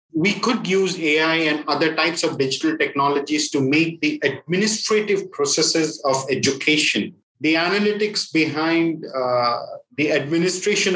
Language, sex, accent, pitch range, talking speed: English, male, Indian, 135-170 Hz, 125 wpm